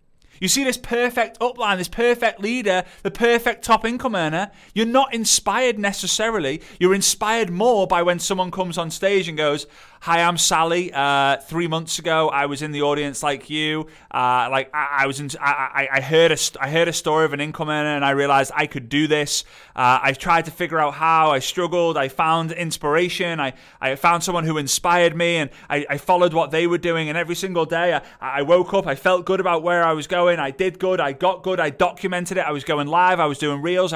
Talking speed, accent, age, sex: 225 wpm, British, 30-49, male